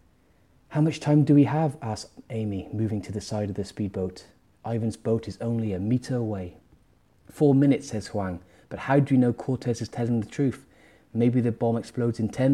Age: 30-49